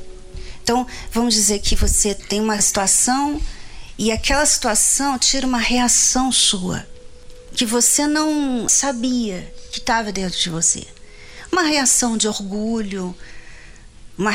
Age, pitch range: 40-59, 190-270 Hz